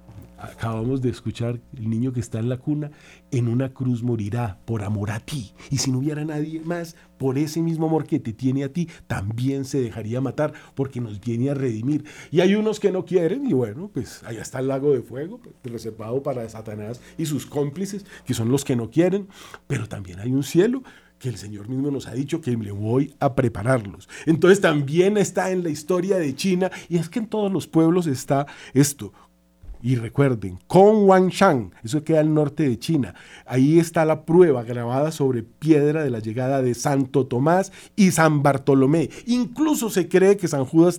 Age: 40-59